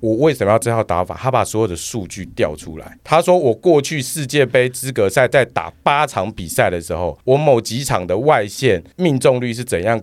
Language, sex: Chinese, male